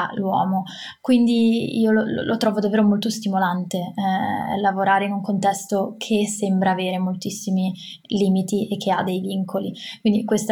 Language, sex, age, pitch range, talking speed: Italian, female, 20-39, 200-230 Hz, 150 wpm